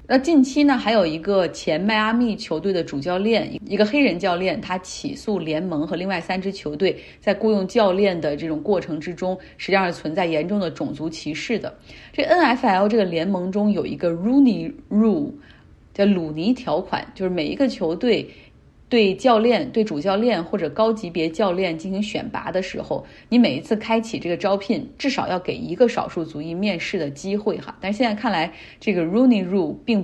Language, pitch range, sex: Chinese, 175-230 Hz, female